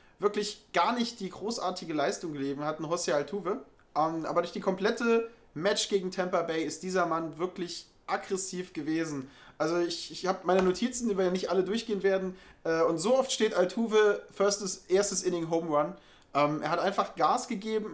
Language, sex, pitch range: German, male, 160-200 Hz